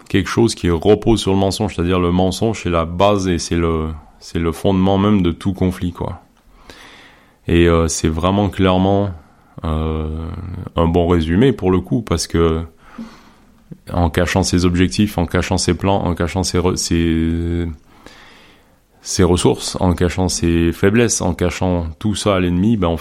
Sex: male